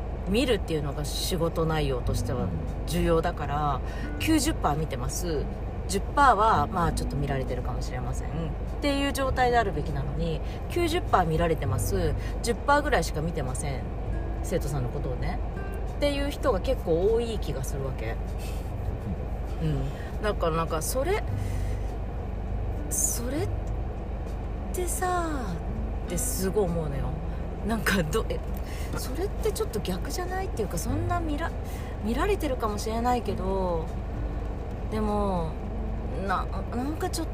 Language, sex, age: Japanese, female, 40-59